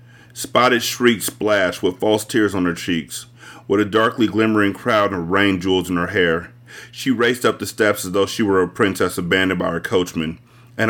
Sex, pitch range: male, 95-120 Hz